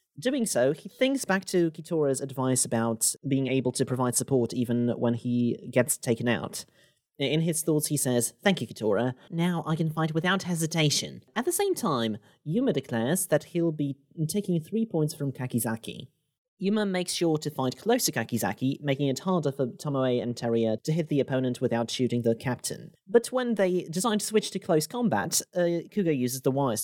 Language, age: English, 30-49